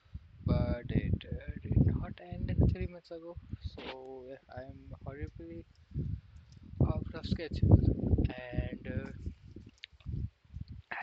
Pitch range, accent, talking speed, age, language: 85-110 Hz, Indian, 100 wpm, 20-39, English